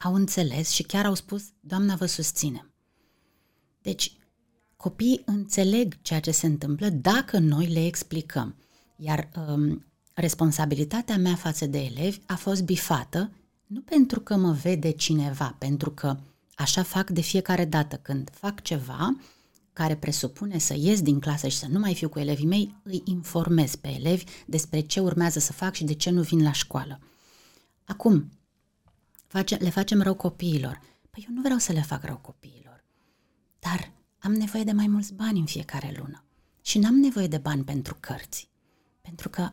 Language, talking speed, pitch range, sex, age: Romanian, 165 wpm, 150-200 Hz, female, 30-49